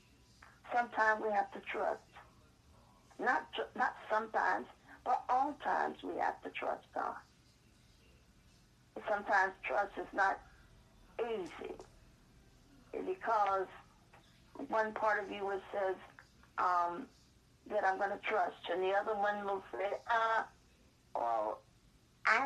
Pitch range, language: 190-220 Hz, English